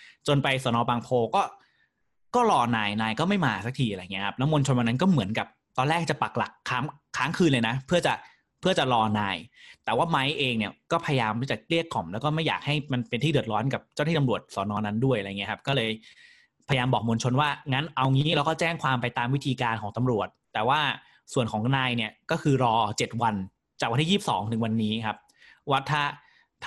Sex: male